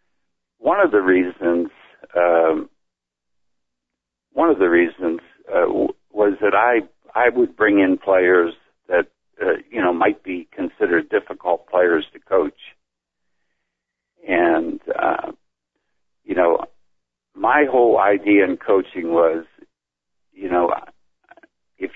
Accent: American